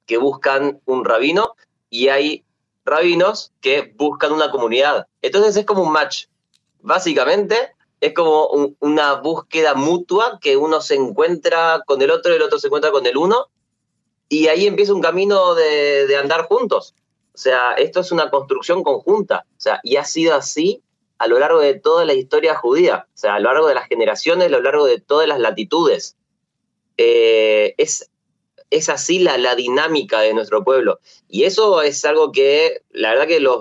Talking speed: 180 wpm